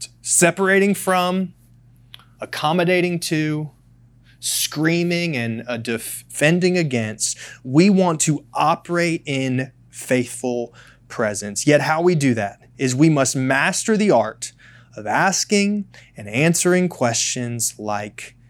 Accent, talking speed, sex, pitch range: American, 105 wpm, male, 120-155 Hz